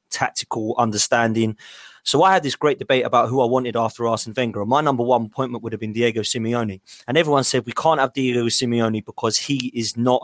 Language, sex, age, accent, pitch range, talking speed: English, male, 20-39, British, 115-135 Hz, 210 wpm